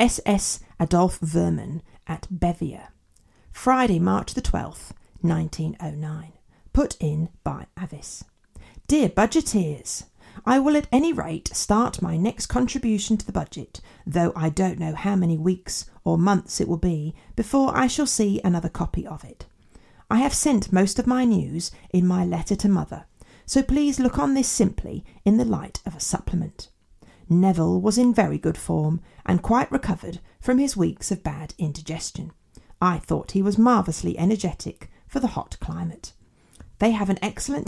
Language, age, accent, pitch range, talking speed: English, 40-59, British, 165-240 Hz, 160 wpm